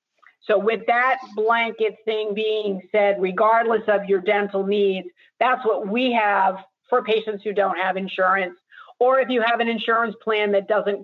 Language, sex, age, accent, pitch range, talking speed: English, female, 50-69, American, 190-225 Hz, 170 wpm